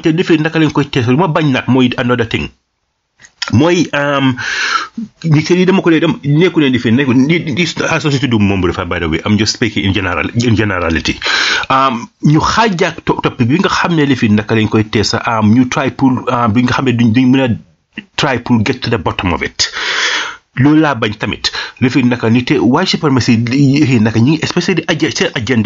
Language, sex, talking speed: English, male, 90 wpm